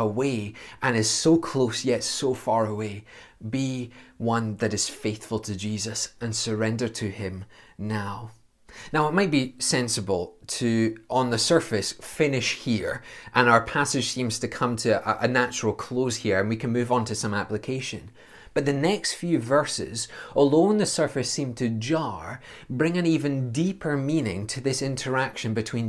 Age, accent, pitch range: 20-39, British, 110-140 Hz